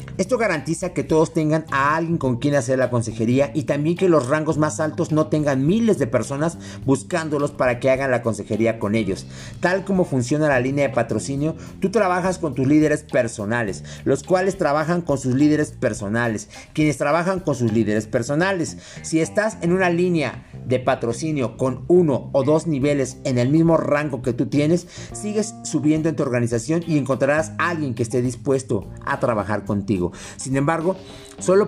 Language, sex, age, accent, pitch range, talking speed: Spanish, male, 50-69, Mexican, 120-160 Hz, 180 wpm